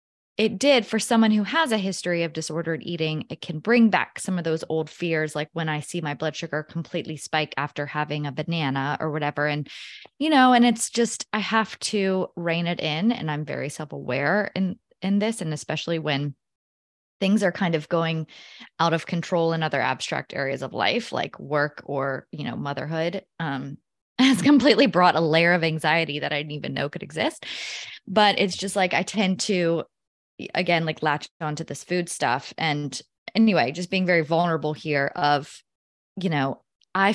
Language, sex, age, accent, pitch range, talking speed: English, female, 20-39, American, 150-185 Hz, 190 wpm